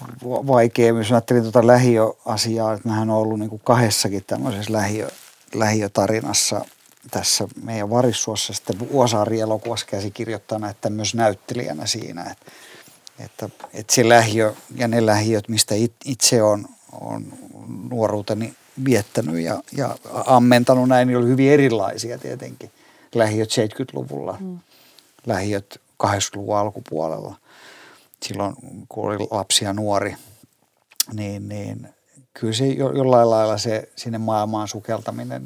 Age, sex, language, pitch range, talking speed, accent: 50-69, male, Finnish, 105-125 Hz, 115 wpm, native